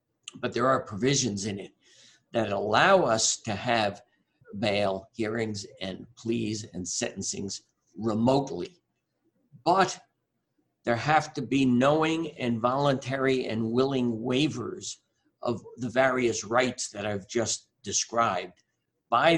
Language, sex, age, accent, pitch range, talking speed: English, male, 60-79, American, 110-135 Hz, 120 wpm